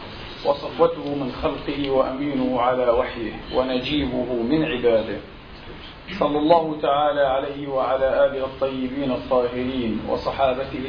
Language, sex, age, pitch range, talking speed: Arabic, male, 40-59, 125-145 Hz, 100 wpm